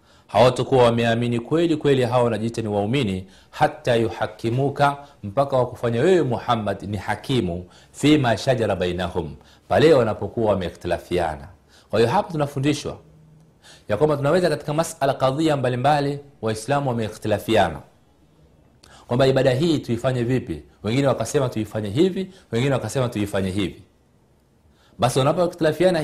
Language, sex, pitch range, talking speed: Swahili, male, 110-145 Hz, 115 wpm